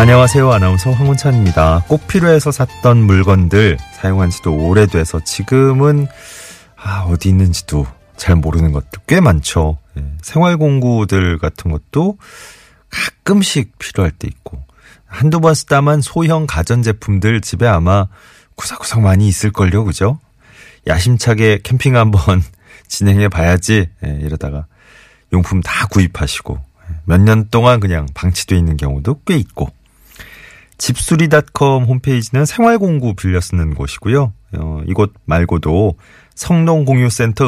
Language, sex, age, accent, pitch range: Korean, male, 30-49, native, 85-120 Hz